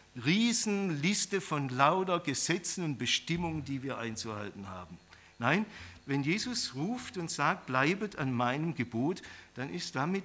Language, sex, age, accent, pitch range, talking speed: German, male, 50-69, German, 115-190 Hz, 135 wpm